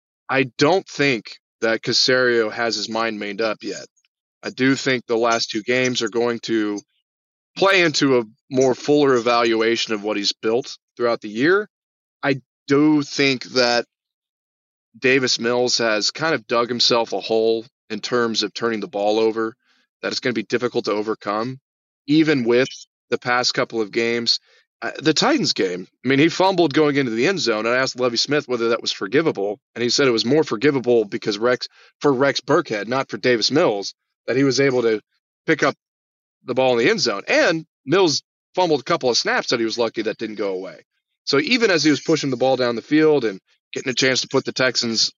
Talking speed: 205 wpm